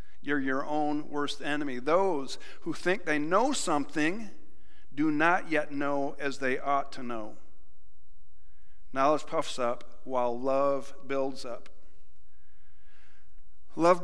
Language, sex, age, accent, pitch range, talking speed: English, male, 50-69, American, 140-175 Hz, 120 wpm